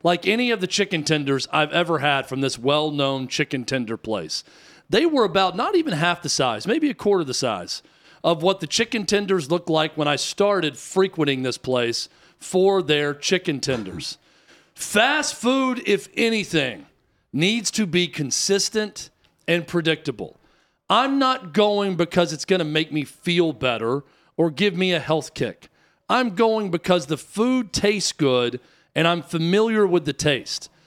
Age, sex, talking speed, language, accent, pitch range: 40-59, male, 165 wpm, English, American, 150-205 Hz